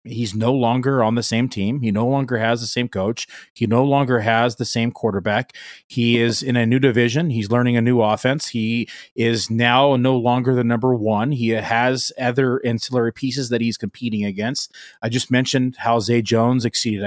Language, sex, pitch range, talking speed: English, male, 115-135 Hz, 195 wpm